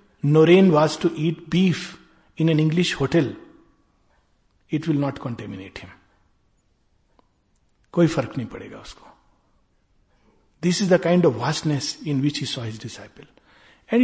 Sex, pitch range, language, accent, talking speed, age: male, 135-190 Hz, Hindi, native, 135 wpm, 60-79